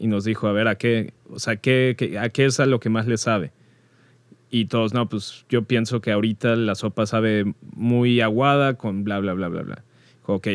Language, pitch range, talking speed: Spanish, 105-120 Hz, 230 wpm